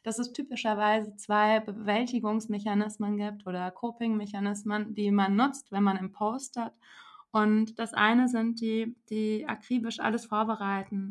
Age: 20-39